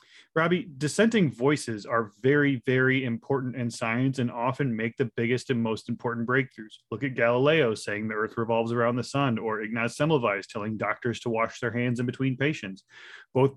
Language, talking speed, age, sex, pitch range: English, 180 wpm, 30-49, male, 115-140 Hz